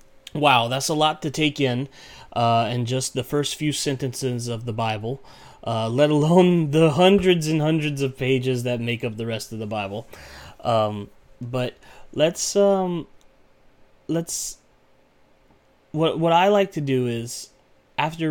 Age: 30-49